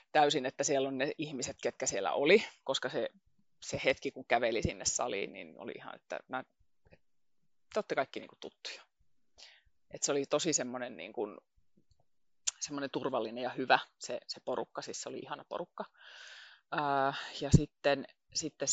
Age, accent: 30-49, native